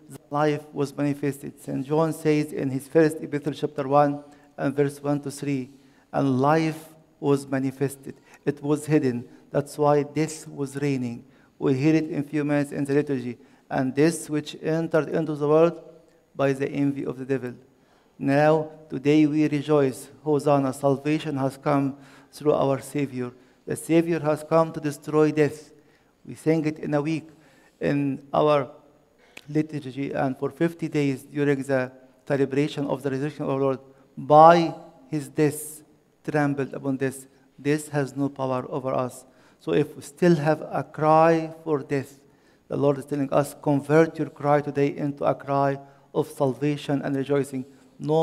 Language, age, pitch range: English, 50-69, 135-150 Hz